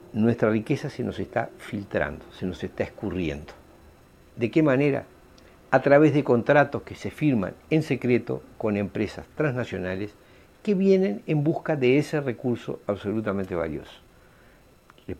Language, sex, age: Spanish, male, 60-79